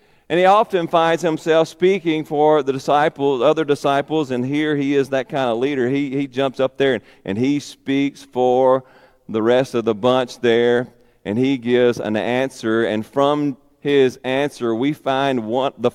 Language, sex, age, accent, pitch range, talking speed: English, male, 40-59, American, 130-220 Hz, 180 wpm